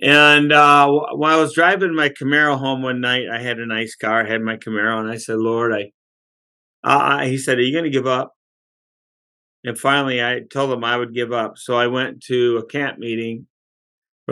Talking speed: 215 wpm